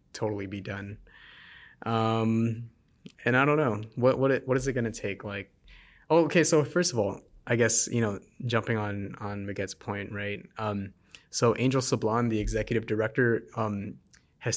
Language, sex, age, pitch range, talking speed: English, male, 20-39, 105-120 Hz, 175 wpm